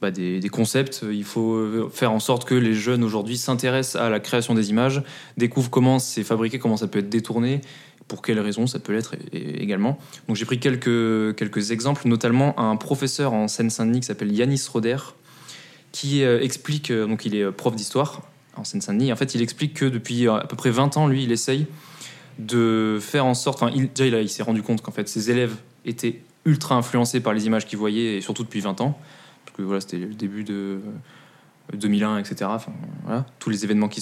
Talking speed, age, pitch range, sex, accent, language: 205 wpm, 20-39, 110-130 Hz, male, French, French